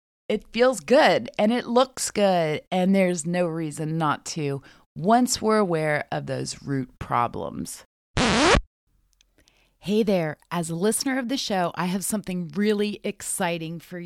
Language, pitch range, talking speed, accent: English, 165-205 Hz, 145 wpm, American